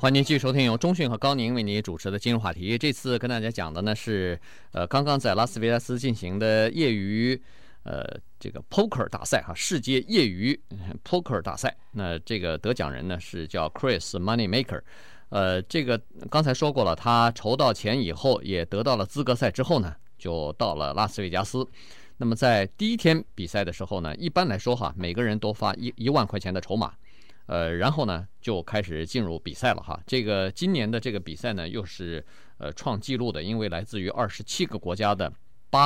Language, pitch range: Chinese, 95-125 Hz